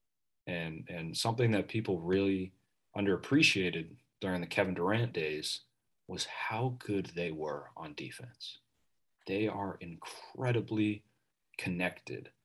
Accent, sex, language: American, male, English